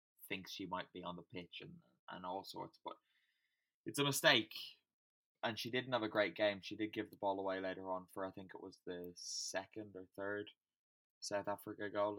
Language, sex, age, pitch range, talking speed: English, male, 10-29, 90-100 Hz, 205 wpm